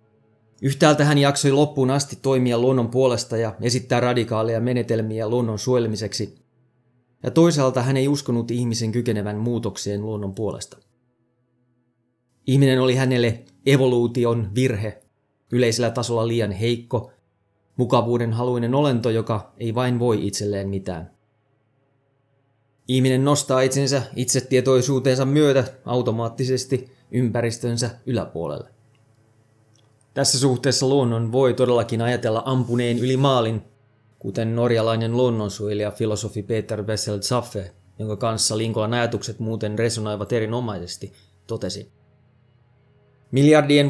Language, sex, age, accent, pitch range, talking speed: Finnish, male, 20-39, native, 110-130 Hz, 105 wpm